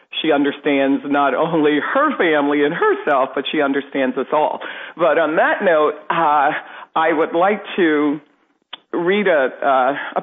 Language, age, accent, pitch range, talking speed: English, 50-69, American, 140-170 Hz, 145 wpm